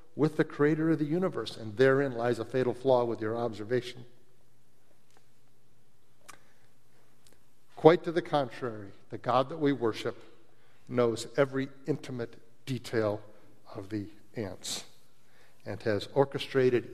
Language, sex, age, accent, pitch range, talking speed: English, male, 50-69, American, 115-145 Hz, 120 wpm